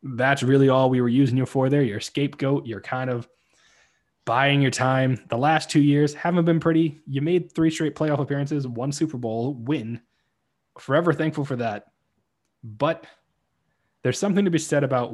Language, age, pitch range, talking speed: English, 20-39, 120-145 Hz, 180 wpm